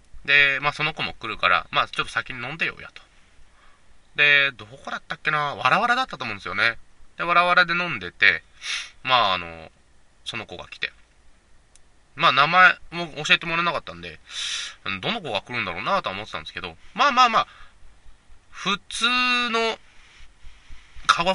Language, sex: Japanese, male